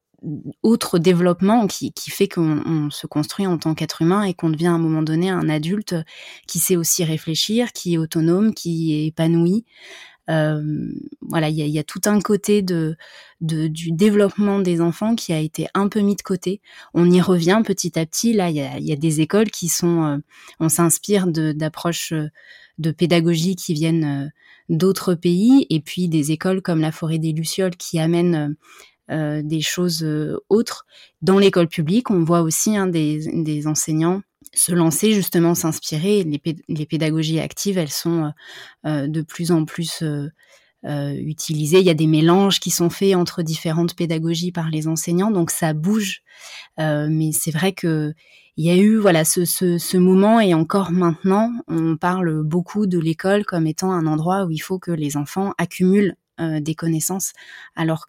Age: 20-39